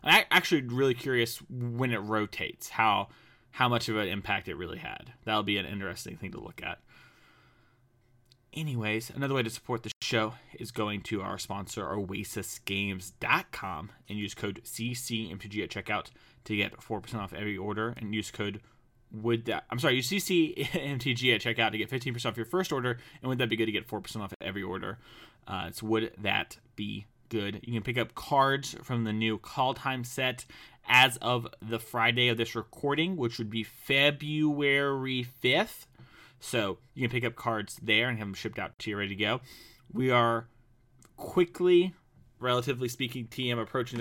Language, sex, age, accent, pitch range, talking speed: English, male, 20-39, American, 110-130 Hz, 180 wpm